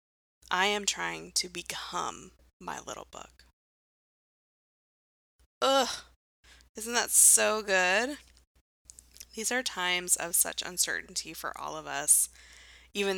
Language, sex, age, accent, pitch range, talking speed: English, female, 20-39, American, 145-215 Hz, 110 wpm